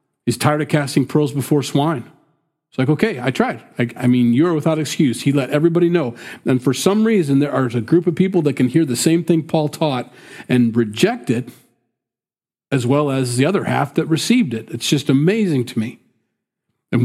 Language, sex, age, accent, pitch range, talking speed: English, male, 40-59, American, 120-155 Hz, 205 wpm